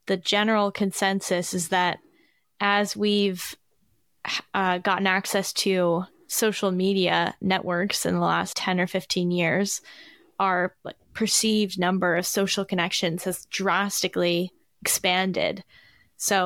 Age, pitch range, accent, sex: 10-29, 180-210 Hz, American, female